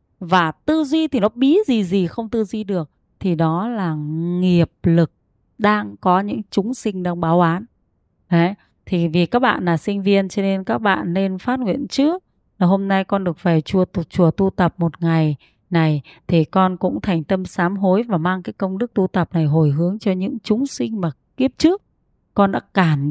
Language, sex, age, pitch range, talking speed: Vietnamese, female, 20-39, 170-220 Hz, 210 wpm